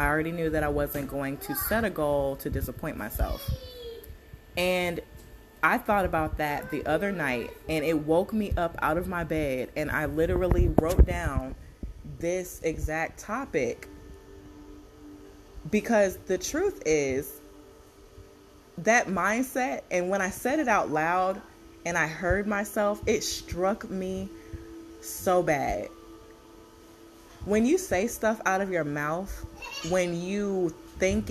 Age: 20-39